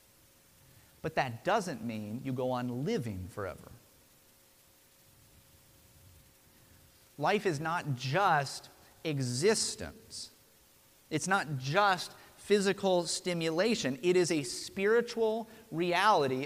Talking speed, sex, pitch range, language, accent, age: 90 wpm, male, 145-200 Hz, English, American, 30-49